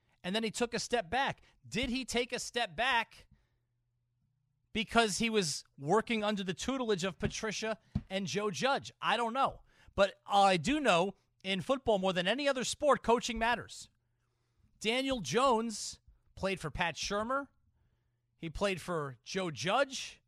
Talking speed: 155 wpm